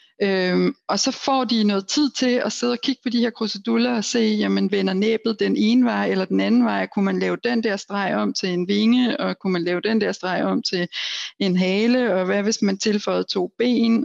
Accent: native